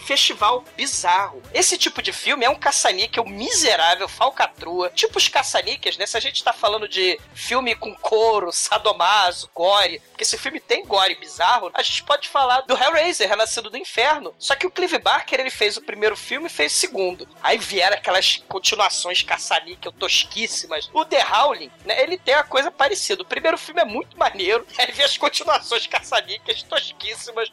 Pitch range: 200-310 Hz